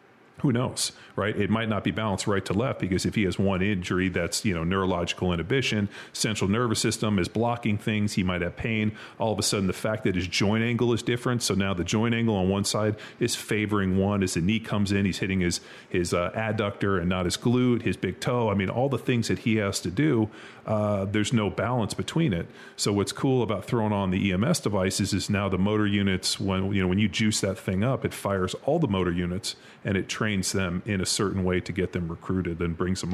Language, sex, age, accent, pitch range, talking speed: English, male, 40-59, American, 95-110 Hz, 240 wpm